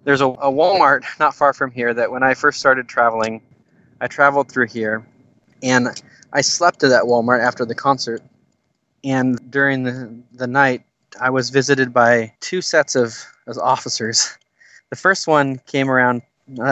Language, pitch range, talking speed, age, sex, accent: English, 120-135 Hz, 170 wpm, 20-39, male, American